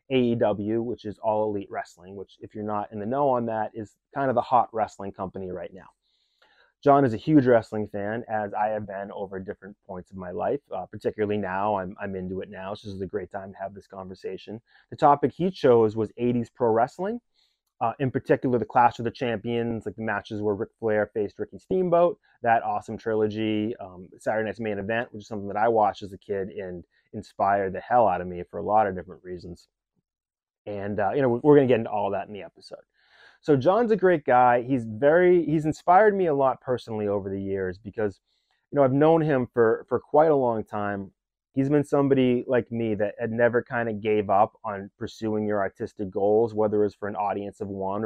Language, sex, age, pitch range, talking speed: English, male, 30-49, 100-125 Hz, 225 wpm